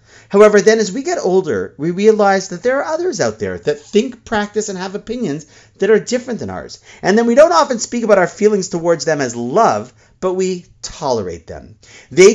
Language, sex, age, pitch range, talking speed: English, male, 30-49, 145-220 Hz, 210 wpm